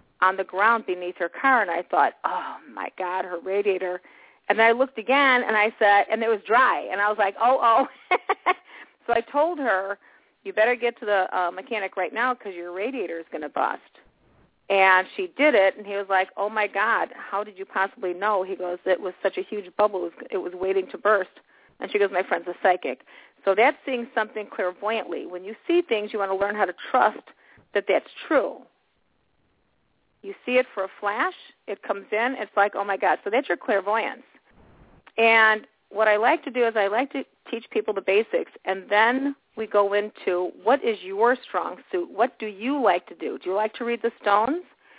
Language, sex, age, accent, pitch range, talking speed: English, female, 40-59, American, 195-240 Hz, 215 wpm